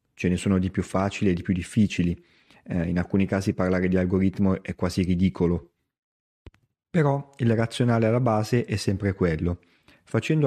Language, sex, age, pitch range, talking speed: Italian, male, 30-49, 95-110 Hz, 165 wpm